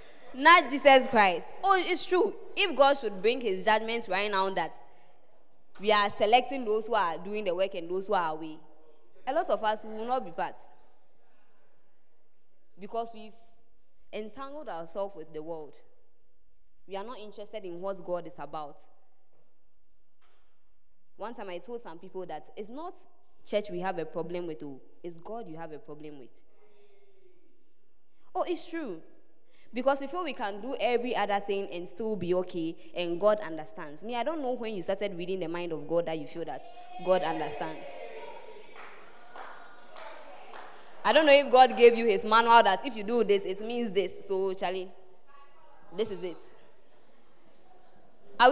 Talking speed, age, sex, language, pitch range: 165 wpm, 20-39, female, English, 185-280 Hz